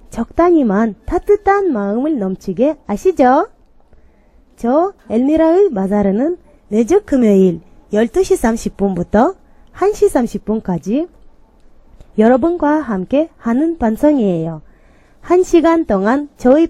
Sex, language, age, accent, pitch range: female, Korean, 20-39, American, 210-330 Hz